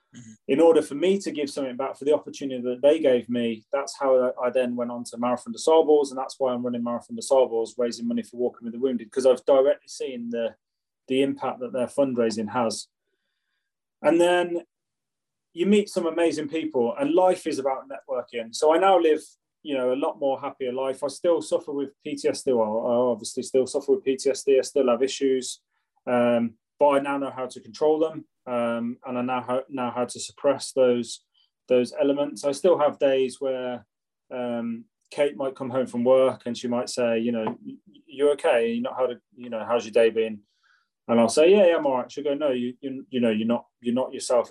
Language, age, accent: English, 20-39, British